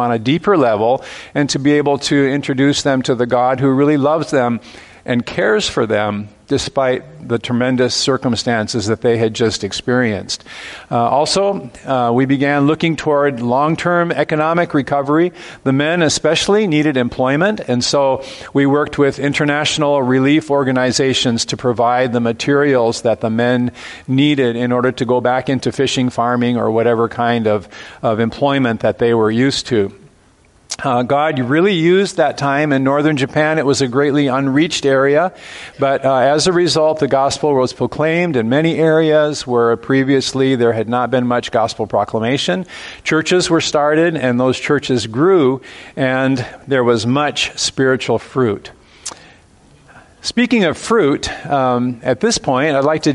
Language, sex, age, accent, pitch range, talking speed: English, male, 50-69, American, 125-150 Hz, 160 wpm